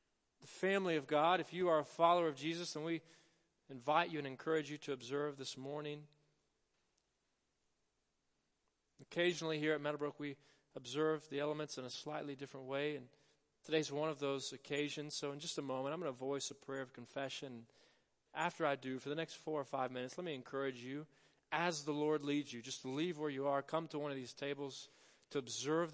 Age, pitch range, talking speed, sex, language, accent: 40-59, 130-150 Hz, 200 wpm, male, English, American